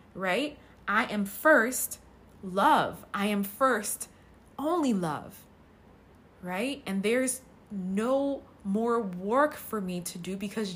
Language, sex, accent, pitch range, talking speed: English, female, American, 160-205 Hz, 115 wpm